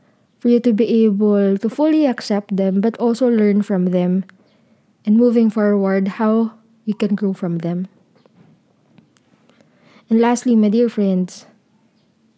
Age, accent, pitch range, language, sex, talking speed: 20-39, native, 195-220 Hz, Filipino, female, 135 wpm